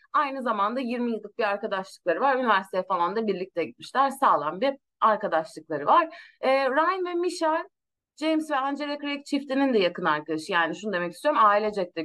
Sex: female